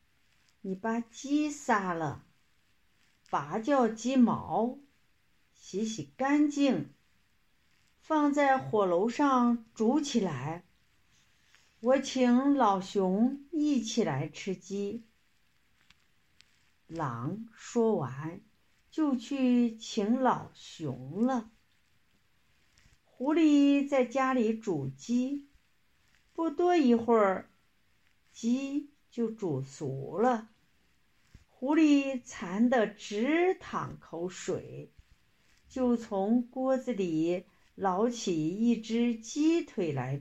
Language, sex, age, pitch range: Chinese, female, 50-69, 190-280 Hz